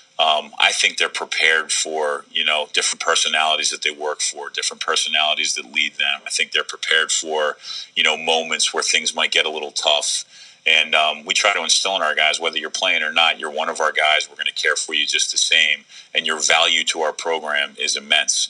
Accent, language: American, English